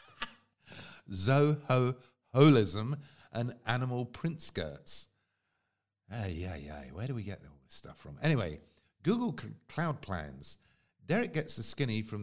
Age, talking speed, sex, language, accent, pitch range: 50-69, 125 wpm, male, English, British, 95-140 Hz